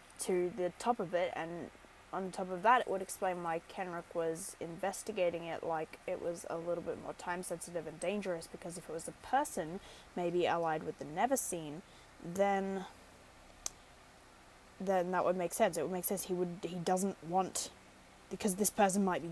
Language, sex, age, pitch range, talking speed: English, female, 10-29, 175-240 Hz, 190 wpm